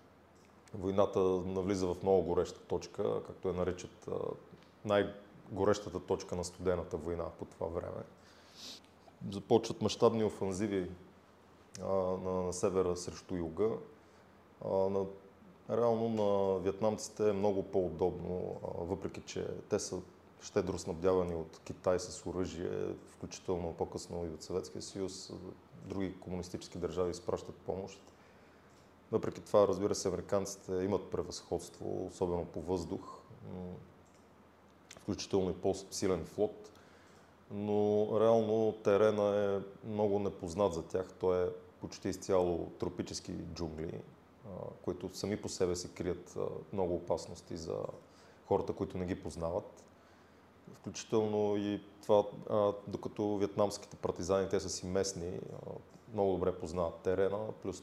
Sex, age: male, 20-39